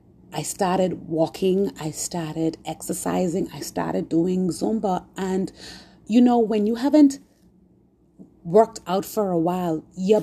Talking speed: 130 wpm